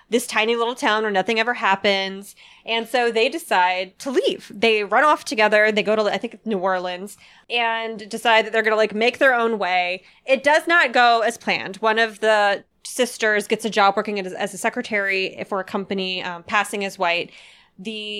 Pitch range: 200-240 Hz